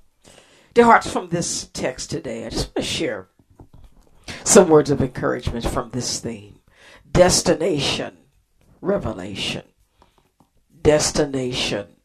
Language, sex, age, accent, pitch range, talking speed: English, female, 60-79, American, 130-185 Hz, 105 wpm